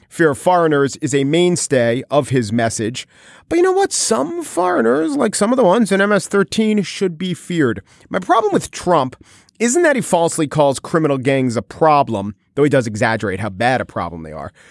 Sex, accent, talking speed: male, American, 195 wpm